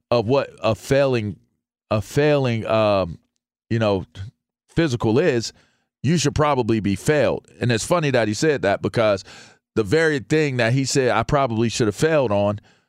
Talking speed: 170 wpm